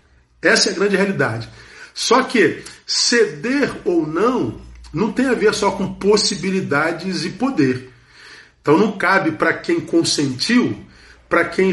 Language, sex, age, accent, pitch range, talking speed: Portuguese, male, 40-59, Brazilian, 150-215 Hz, 140 wpm